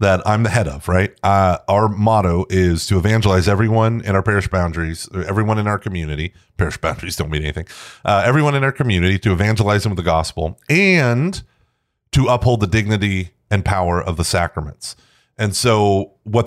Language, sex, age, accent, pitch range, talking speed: English, male, 30-49, American, 95-125 Hz, 180 wpm